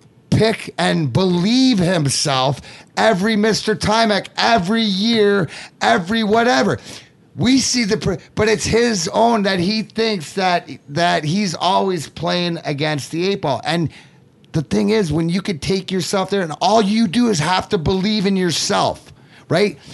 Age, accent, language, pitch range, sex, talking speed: 30-49, American, English, 165-215 Hz, male, 155 wpm